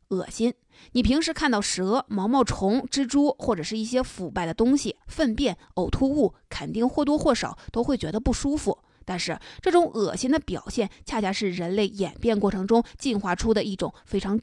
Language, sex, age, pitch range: Chinese, female, 20-39, 195-245 Hz